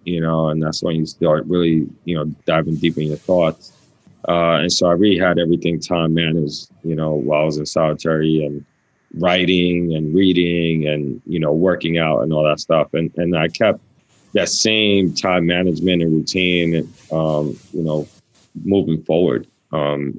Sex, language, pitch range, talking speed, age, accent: male, English, 80-85 Hz, 180 wpm, 20-39, American